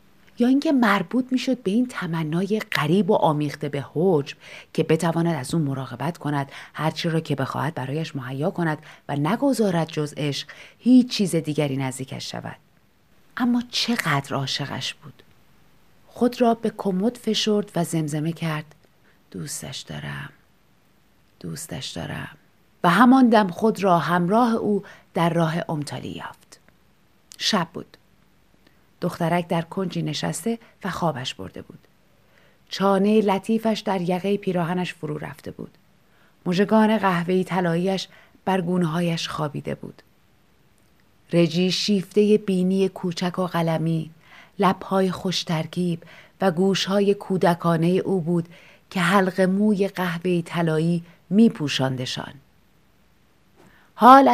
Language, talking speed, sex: Persian, 120 wpm, female